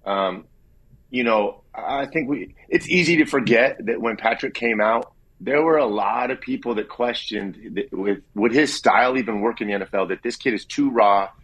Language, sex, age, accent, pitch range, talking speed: English, male, 30-49, American, 100-130 Hz, 205 wpm